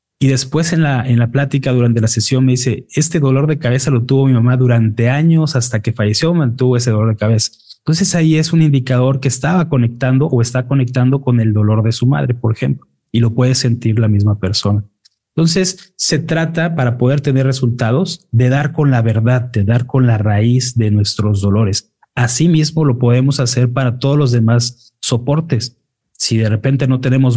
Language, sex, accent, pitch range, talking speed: Spanish, male, Mexican, 115-140 Hz, 195 wpm